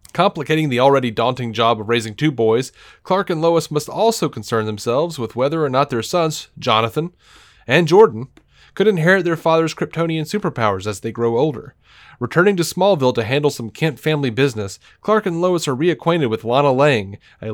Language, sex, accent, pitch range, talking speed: English, male, American, 115-155 Hz, 180 wpm